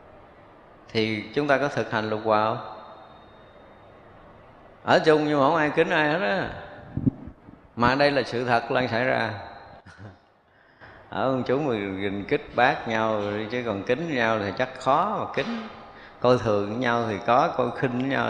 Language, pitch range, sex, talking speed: Vietnamese, 110-140 Hz, male, 175 wpm